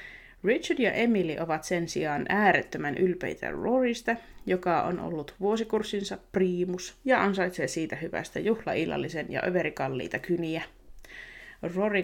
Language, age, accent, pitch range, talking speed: Finnish, 30-49, native, 170-215 Hz, 115 wpm